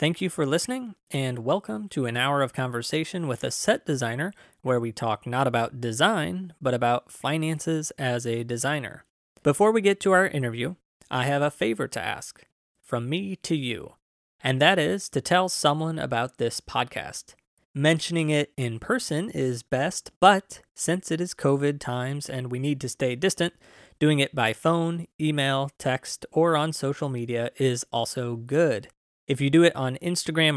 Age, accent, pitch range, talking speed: 20-39, American, 125-160 Hz, 175 wpm